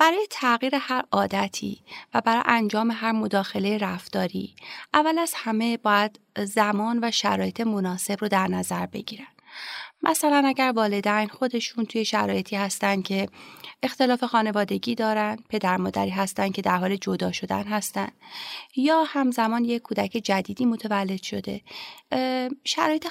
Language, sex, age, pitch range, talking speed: Persian, female, 30-49, 195-245 Hz, 130 wpm